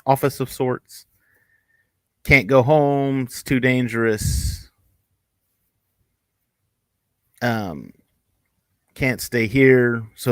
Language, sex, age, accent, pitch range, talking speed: English, male, 30-49, American, 115-145 Hz, 80 wpm